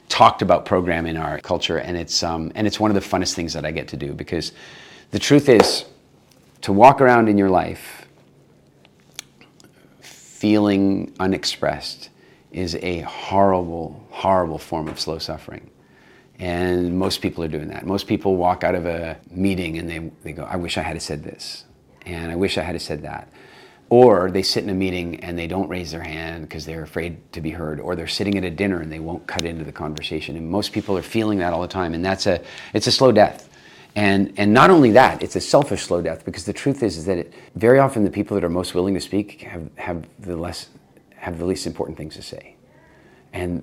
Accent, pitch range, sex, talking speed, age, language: American, 85-100 Hz, male, 215 wpm, 40-59, English